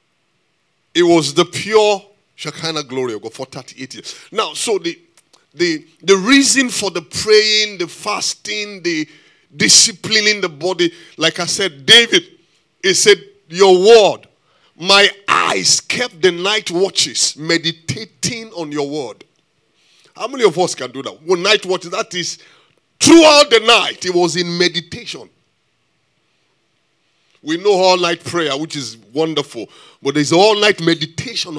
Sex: male